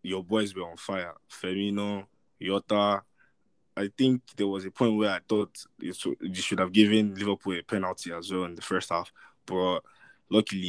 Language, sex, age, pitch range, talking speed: English, male, 20-39, 95-110 Hz, 175 wpm